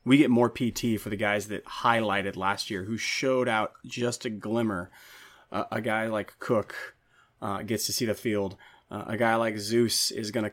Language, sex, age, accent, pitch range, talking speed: English, male, 20-39, American, 105-125 Hz, 205 wpm